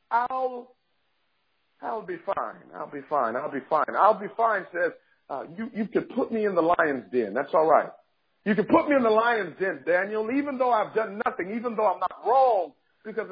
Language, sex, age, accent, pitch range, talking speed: English, male, 50-69, American, 195-255 Hz, 210 wpm